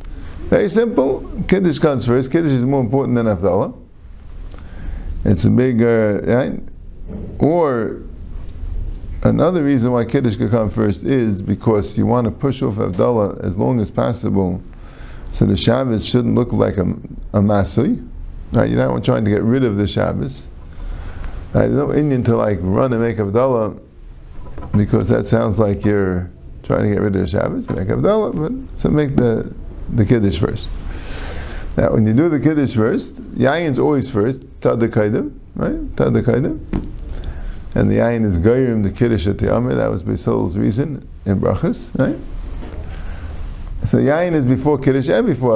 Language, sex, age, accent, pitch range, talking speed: English, male, 50-69, American, 85-125 Hz, 165 wpm